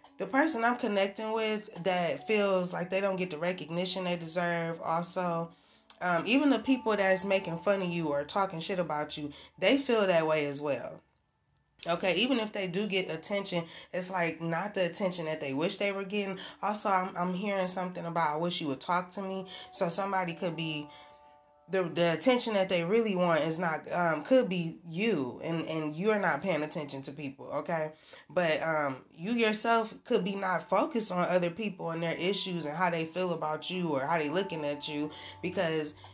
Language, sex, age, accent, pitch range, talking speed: English, female, 20-39, American, 165-200 Hz, 200 wpm